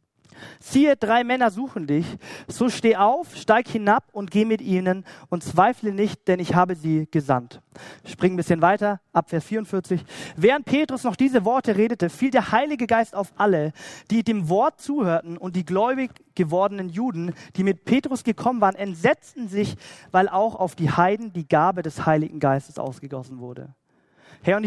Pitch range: 175-235 Hz